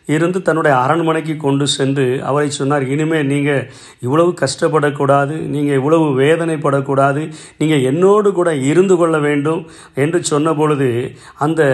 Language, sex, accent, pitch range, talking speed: Tamil, male, native, 135-165 Hz, 110 wpm